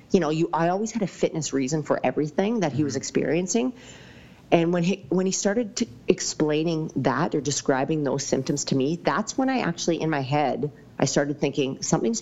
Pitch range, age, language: 135-175 Hz, 40-59, English